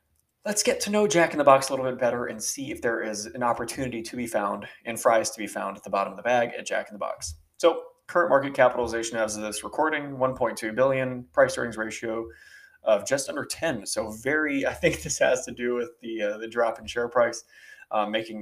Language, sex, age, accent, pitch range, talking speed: English, male, 20-39, American, 110-140 Hz, 240 wpm